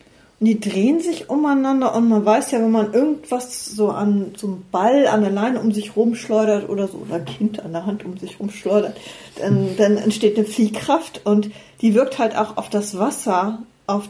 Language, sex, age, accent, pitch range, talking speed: German, female, 50-69, German, 200-240 Hz, 200 wpm